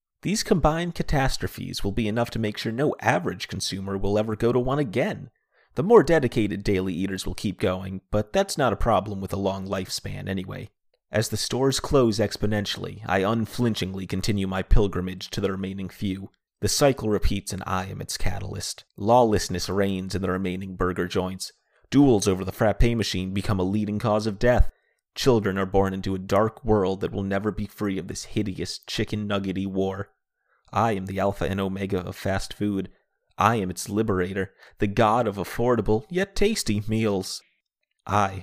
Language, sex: English, male